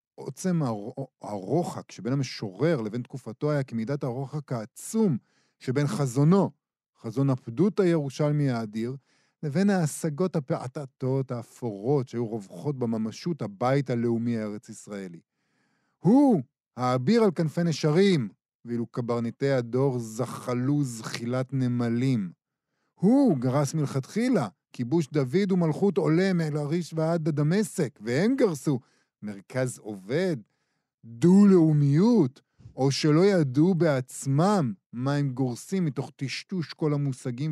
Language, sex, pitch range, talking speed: Hebrew, male, 120-155 Hz, 105 wpm